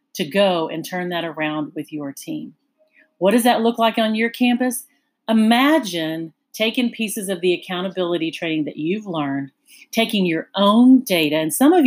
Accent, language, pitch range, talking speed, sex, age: American, English, 170-240 Hz, 170 wpm, female, 40-59